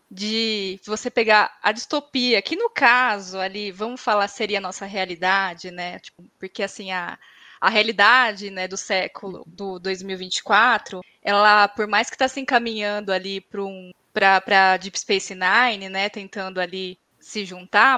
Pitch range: 195-240 Hz